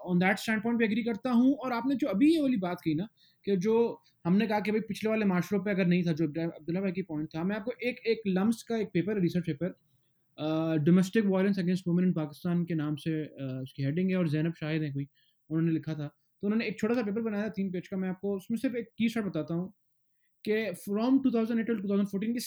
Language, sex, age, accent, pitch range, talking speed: English, male, 20-39, Indian, 170-225 Hz, 120 wpm